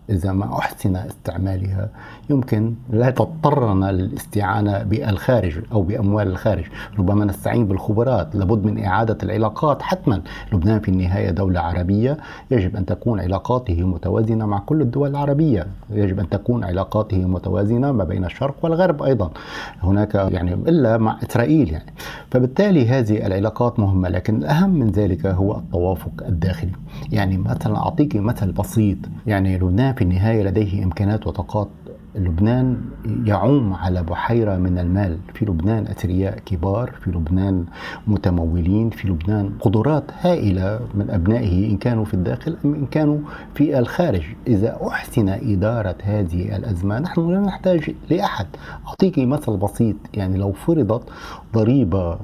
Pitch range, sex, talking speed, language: 95-120 Hz, male, 135 wpm, Arabic